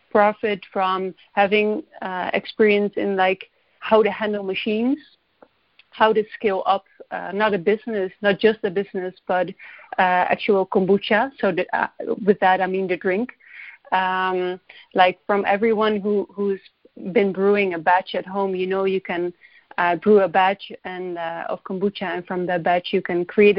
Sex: female